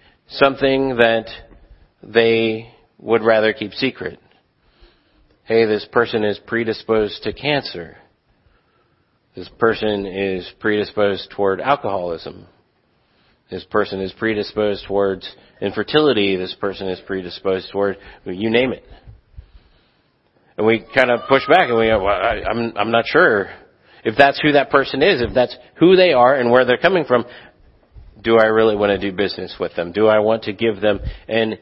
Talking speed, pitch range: 150 wpm, 100-115 Hz